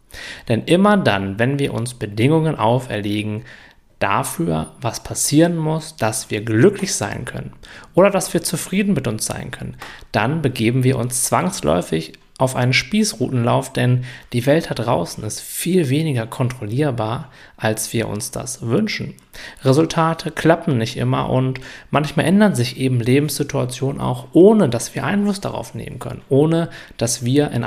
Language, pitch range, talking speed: German, 110-145 Hz, 150 wpm